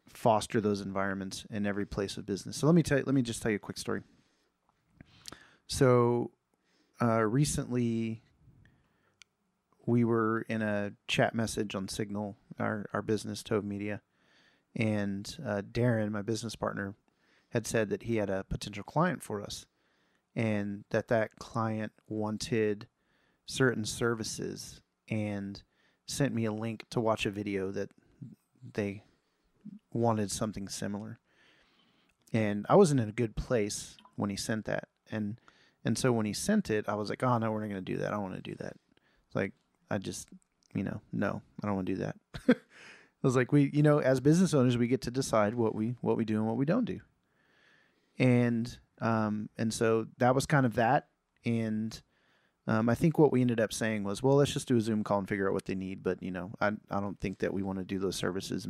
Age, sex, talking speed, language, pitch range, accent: 30-49, male, 195 wpm, English, 105-125 Hz, American